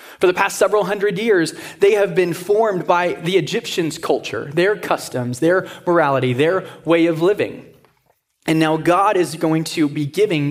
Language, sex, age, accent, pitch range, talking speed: English, male, 20-39, American, 150-185 Hz, 170 wpm